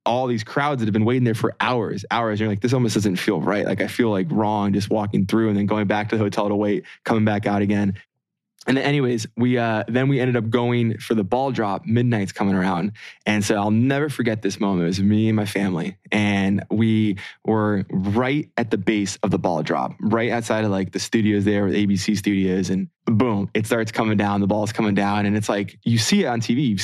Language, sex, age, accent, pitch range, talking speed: English, male, 20-39, American, 105-120 Hz, 245 wpm